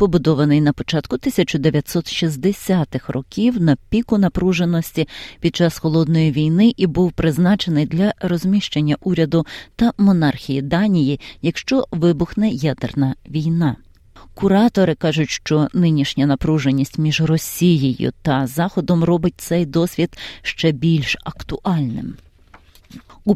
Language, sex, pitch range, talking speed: Ukrainian, female, 145-180 Hz, 105 wpm